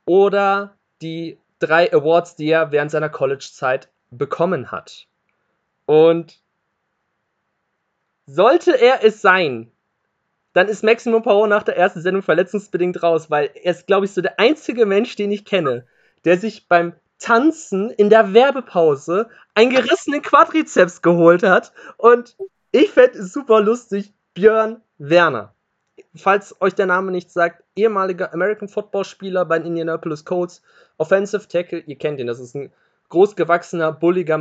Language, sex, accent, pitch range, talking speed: German, male, German, 165-210 Hz, 140 wpm